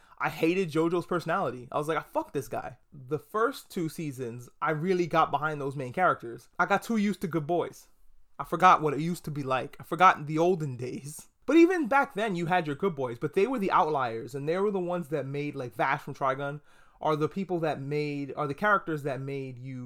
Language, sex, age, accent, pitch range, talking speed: English, male, 30-49, American, 140-190 Hz, 235 wpm